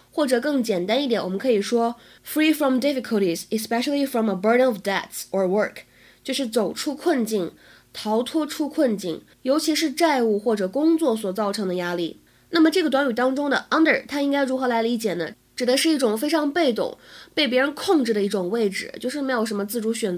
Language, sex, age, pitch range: Chinese, female, 20-39, 200-275 Hz